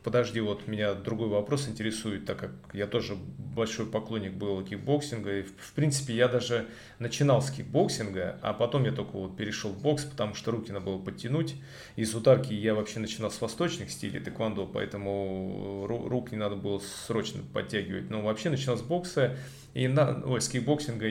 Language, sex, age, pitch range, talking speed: Russian, male, 30-49, 105-135 Hz, 170 wpm